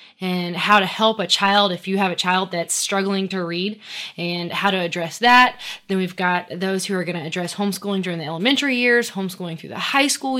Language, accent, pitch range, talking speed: English, American, 180-220 Hz, 225 wpm